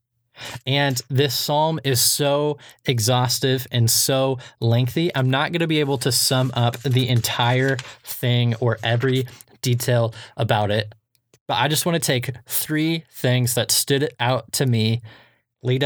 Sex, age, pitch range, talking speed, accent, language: male, 20-39, 120-135 Hz, 150 wpm, American, English